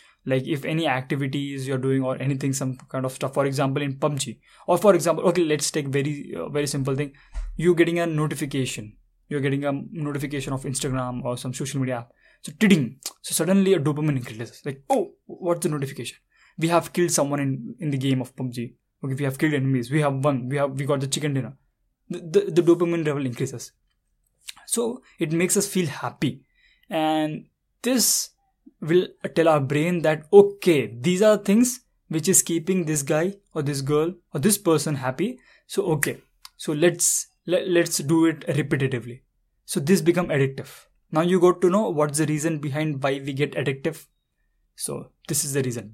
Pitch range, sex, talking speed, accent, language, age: 135-175 Hz, male, 190 wpm, Indian, English, 20-39